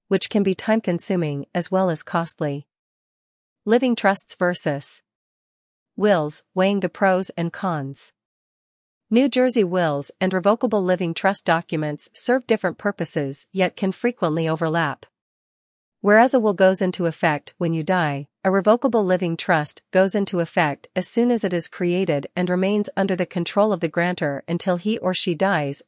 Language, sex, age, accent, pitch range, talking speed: English, female, 40-59, American, 165-205 Hz, 155 wpm